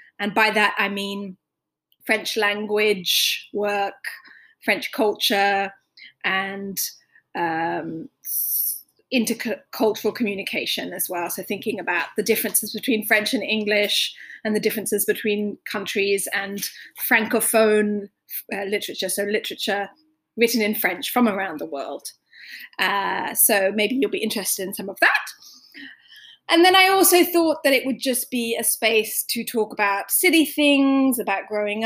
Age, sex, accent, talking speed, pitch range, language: 20-39, female, British, 135 wpm, 205-245 Hz, English